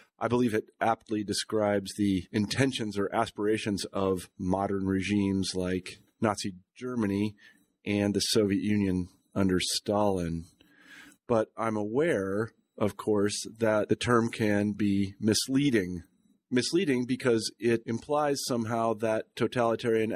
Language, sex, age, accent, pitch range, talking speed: English, male, 40-59, American, 100-120 Hz, 115 wpm